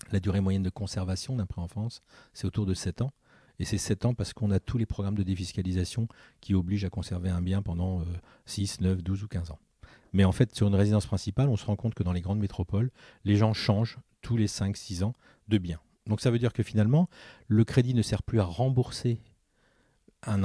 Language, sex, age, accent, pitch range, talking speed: French, male, 40-59, French, 95-115 Hz, 225 wpm